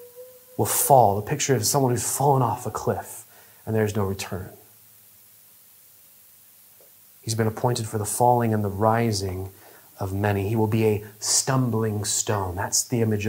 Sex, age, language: male, 30-49, English